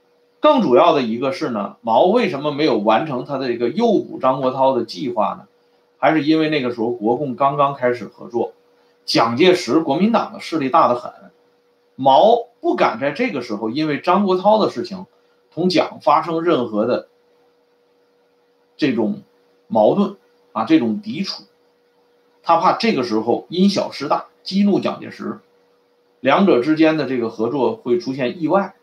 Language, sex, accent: Swedish, male, Chinese